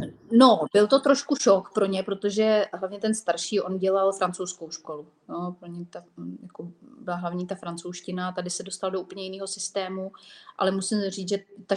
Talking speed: 185 wpm